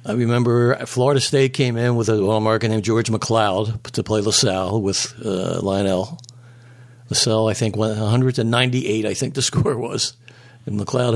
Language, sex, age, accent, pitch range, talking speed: English, male, 60-79, American, 110-130 Hz, 160 wpm